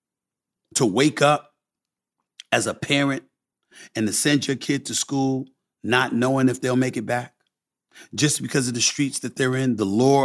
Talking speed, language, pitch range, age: 175 wpm, English, 130-155 Hz, 40-59